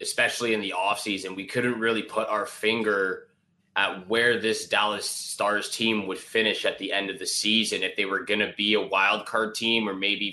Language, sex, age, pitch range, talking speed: English, male, 20-39, 100-115 Hz, 215 wpm